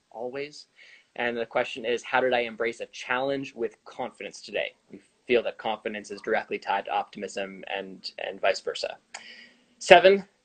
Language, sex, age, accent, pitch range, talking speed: English, male, 20-39, American, 110-150 Hz, 160 wpm